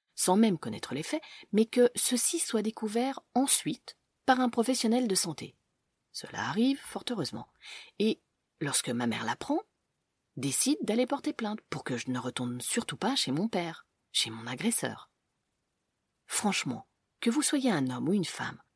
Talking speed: 165 wpm